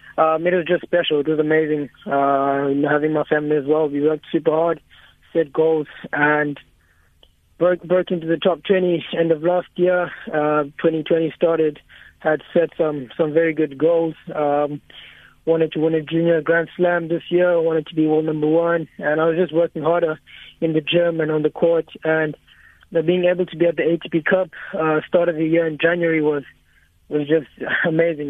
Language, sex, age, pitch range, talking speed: English, male, 20-39, 150-170 Hz, 200 wpm